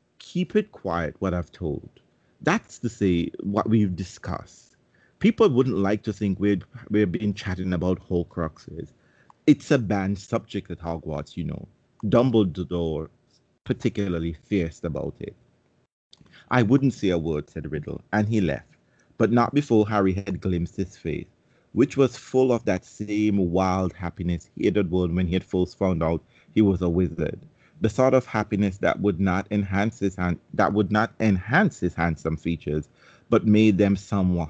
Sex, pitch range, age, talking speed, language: male, 90-110 Hz, 30-49, 165 wpm, English